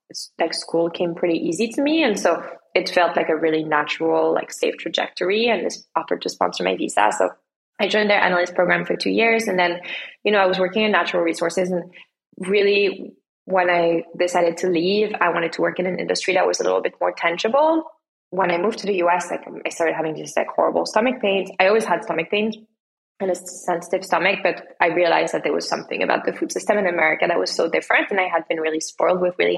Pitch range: 170-200 Hz